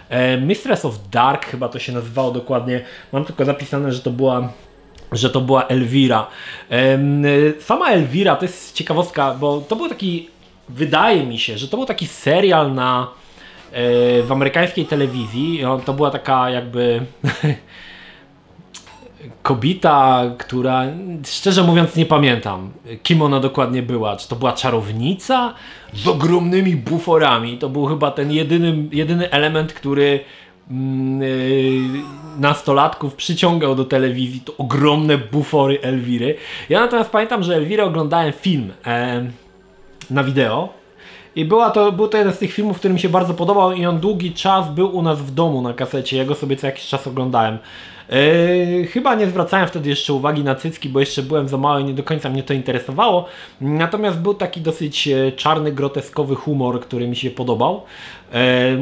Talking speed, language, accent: 155 wpm, Polish, native